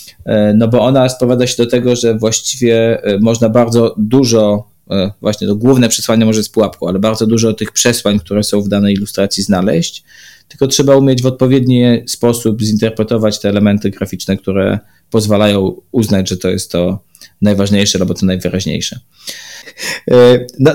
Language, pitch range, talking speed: Polish, 105-125 Hz, 150 wpm